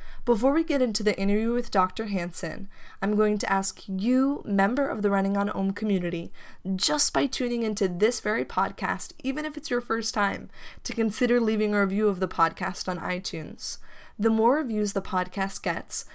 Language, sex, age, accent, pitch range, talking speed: English, female, 10-29, American, 190-225 Hz, 185 wpm